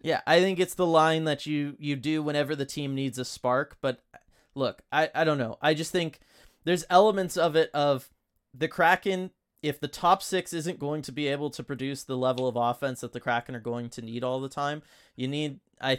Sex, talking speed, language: male, 225 wpm, English